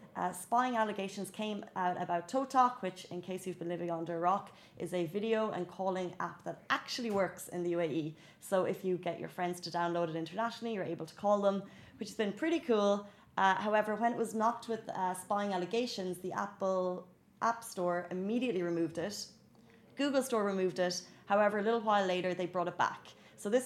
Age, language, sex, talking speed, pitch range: 30-49, Arabic, female, 205 wpm, 175-215 Hz